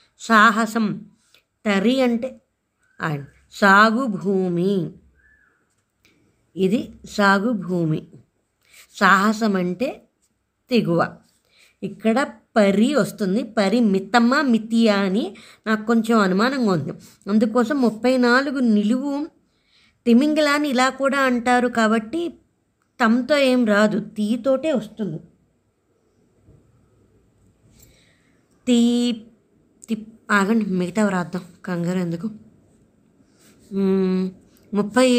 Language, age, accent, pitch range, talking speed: Telugu, 20-39, native, 195-240 Hz, 75 wpm